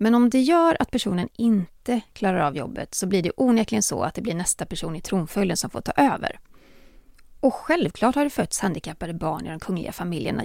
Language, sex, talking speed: Swedish, female, 210 wpm